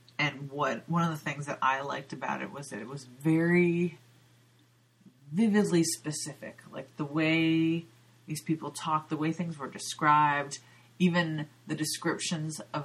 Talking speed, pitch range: 155 wpm, 130-160 Hz